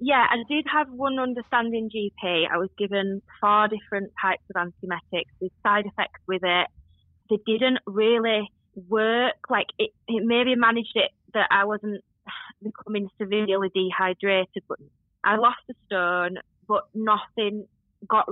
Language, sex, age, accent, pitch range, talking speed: English, female, 20-39, British, 190-215 Hz, 145 wpm